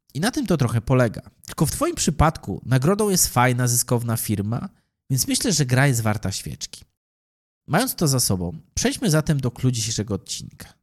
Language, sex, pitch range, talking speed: Polish, male, 105-135 Hz, 170 wpm